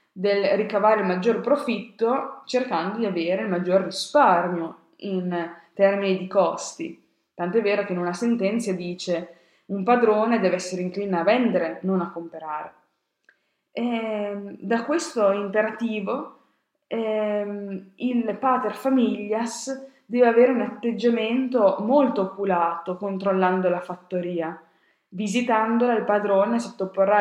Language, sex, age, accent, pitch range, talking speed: Italian, female, 20-39, native, 180-220 Hz, 120 wpm